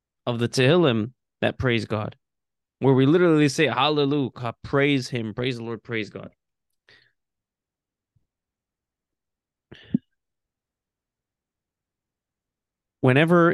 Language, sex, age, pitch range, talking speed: English, male, 20-39, 110-135 Hz, 90 wpm